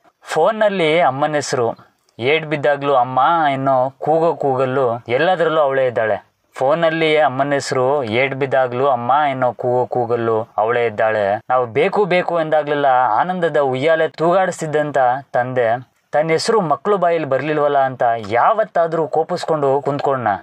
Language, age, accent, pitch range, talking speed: Kannada, 20-39, native, 125-160 Hz, 115 wpm